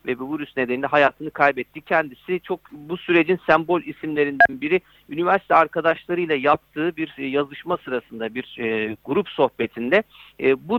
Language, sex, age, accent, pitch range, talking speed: Turkish, male, 50-69, native, 140-180 Hz, 120 wpm